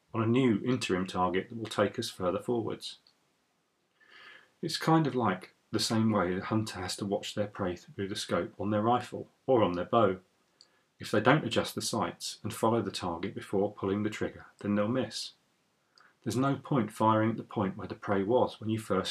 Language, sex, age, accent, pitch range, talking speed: English, male, 40-59, British, 95-120 Hz, 205 wpm